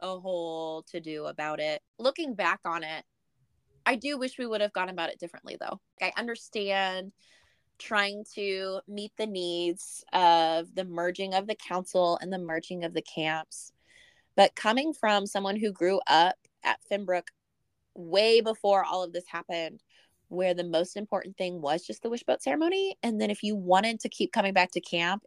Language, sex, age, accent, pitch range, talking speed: English, female, 20-39, American, 170-205 Hz, 180 wpm